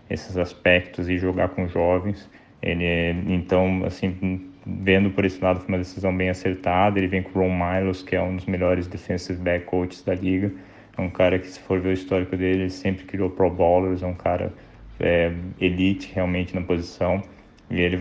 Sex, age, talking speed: male, 20-39, 195 wpm